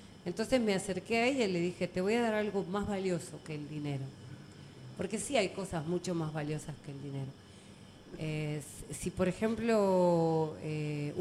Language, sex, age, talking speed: Spanish, female, 40-59, 175 wpm